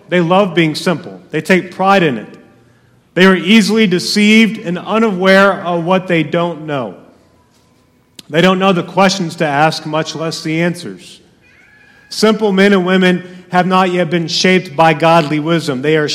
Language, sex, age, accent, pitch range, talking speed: English, male, 40-59, American, 140-185 Hz, 165 wpm